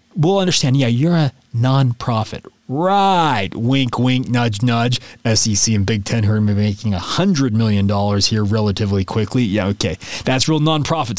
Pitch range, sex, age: 125-185 Hz, male, 30-49